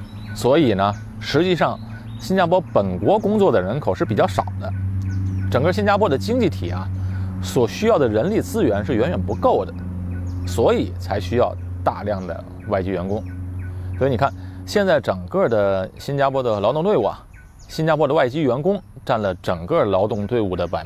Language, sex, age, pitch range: Chinese, male, 30-49, 95-130 Hz